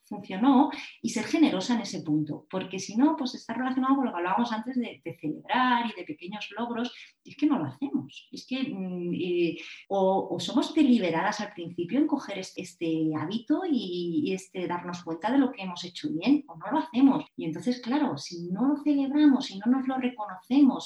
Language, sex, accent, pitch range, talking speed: Spanish, female, Spanish, 175-275 Hz, 205 wpm